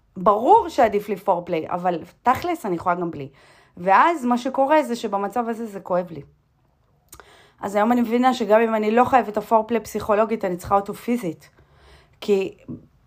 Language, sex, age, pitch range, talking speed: Hebrew, female, 30-49, 180-245 Hz, 160 wpm